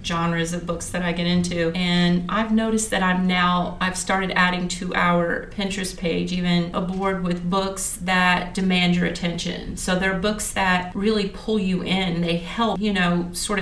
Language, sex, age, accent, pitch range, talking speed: English, female, 40-59, American, 180-205 Hz, 190 wpm